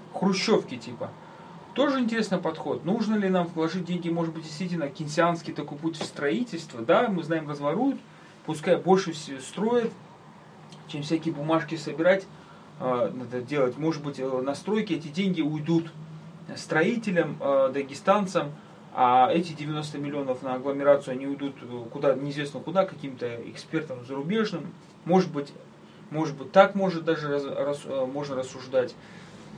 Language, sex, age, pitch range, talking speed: Russian, male, 30-49, 145-190 Hz, 140 wpm